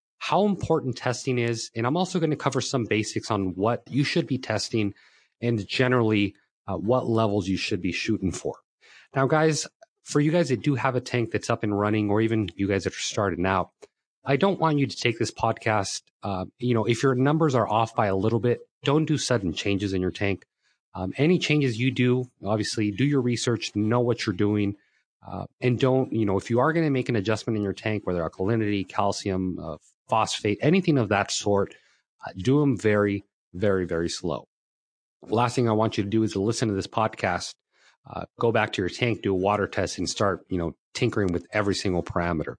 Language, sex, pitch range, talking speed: English, male, 100-130 Hz, 220 wpm